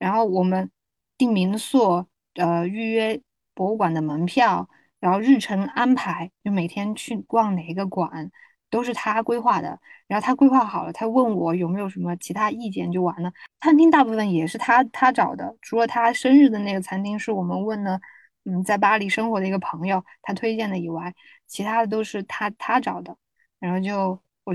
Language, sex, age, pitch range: Chinese, female, 10-29, 185-235 Hz